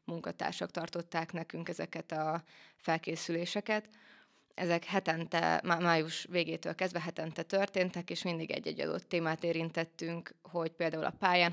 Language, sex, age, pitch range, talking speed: Hungarian, female, 20-39, 160-175 Hz, 120 wpm